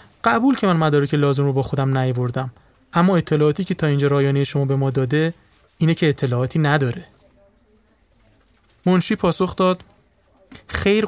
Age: 30-49